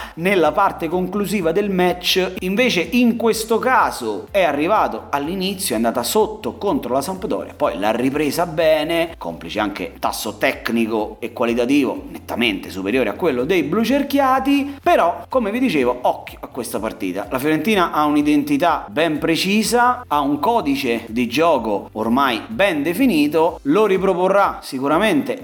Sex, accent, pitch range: male, native, 130-205 Hz